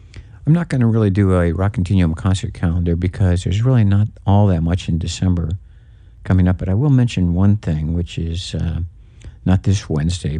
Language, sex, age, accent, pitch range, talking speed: English, male, 60-79, American, 85-105 Hz, 195 wpm